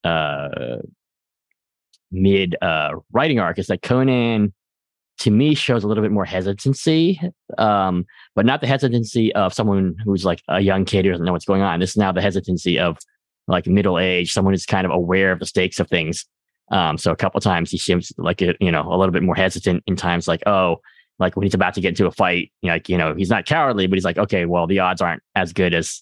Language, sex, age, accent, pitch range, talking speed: English, male, 20-39, American, 90-110 Hz, 225 wpm